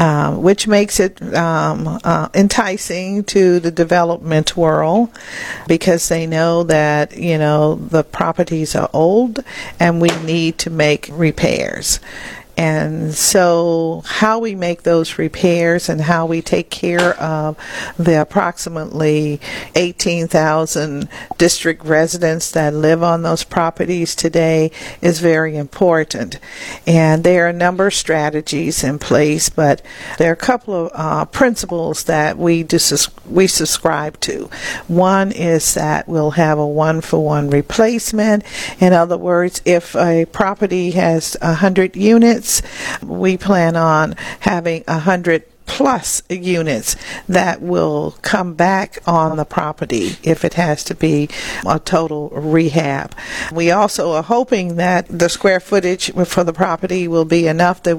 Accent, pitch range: American, 160-180 Hz